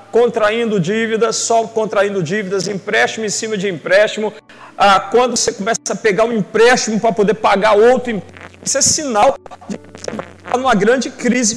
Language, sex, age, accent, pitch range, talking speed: Portuguese, male, 50-69, Brazilian, 180-240 Hz, 155 wpm